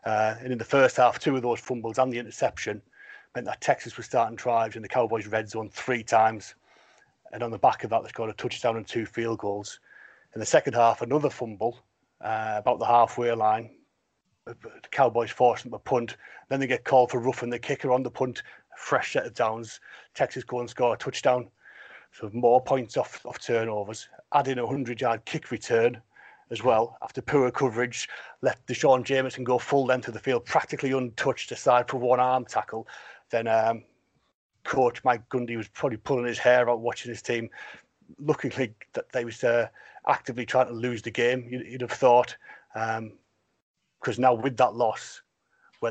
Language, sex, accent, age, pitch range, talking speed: English, male, British, 40-59, 110-130 Hz, 190 wpm